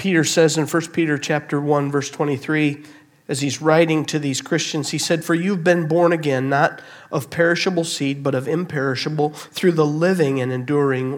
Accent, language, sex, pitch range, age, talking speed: American, English, male, 130-160 Hz, 50-69, 185 wpm